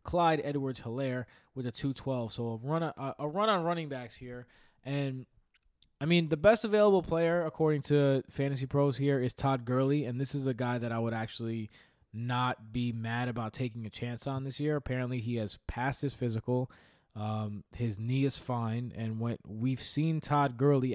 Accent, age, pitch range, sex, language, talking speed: American, 20-39, 115-145 Hz, male, English, 190 wpm